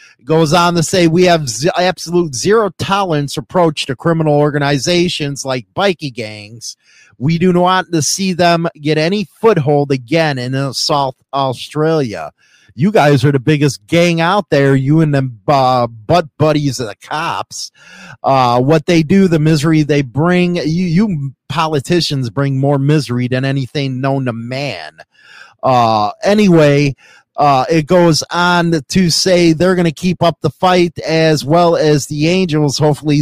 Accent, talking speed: American, 160 wpm